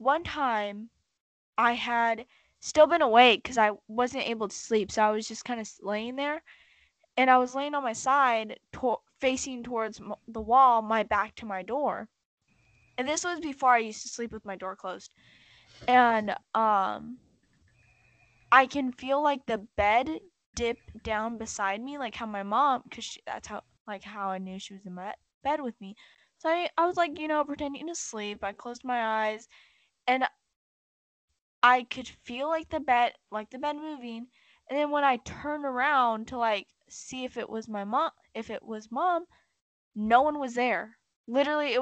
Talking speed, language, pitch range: 185 wpm, English, 210-265 Hz